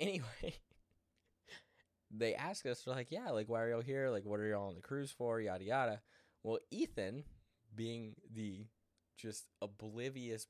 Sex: male